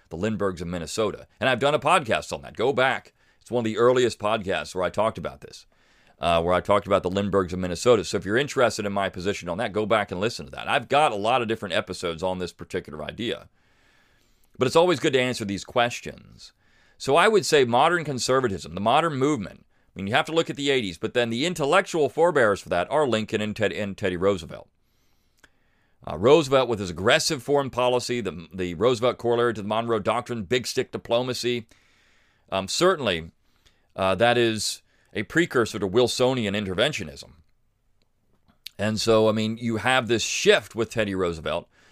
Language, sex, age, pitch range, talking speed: English, male, 40-59, 100-125 Hz, 195 wpm